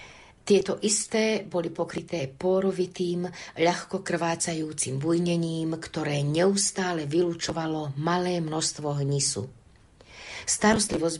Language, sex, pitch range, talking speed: Slovak, female, 165-195 Hz, 80 wpm